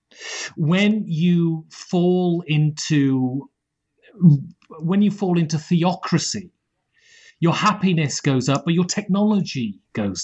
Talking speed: 100 wpm